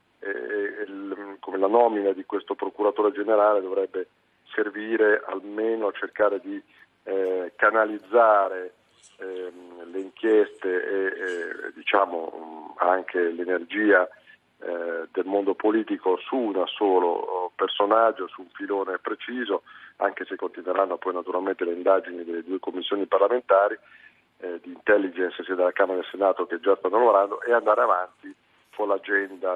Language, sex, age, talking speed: Italian, male, 40-59, 130 wpm